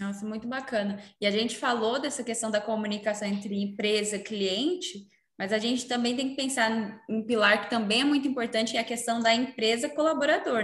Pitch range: 205-245 Hz